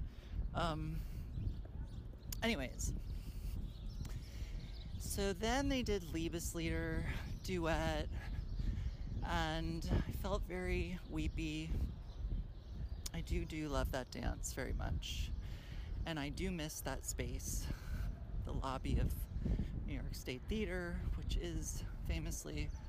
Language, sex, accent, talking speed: English, male, American, 100 wpm